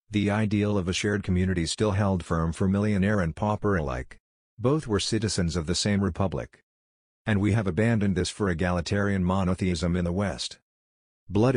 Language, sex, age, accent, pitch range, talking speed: English, male, 50-69, American, 90-105 Hz, 170 wpm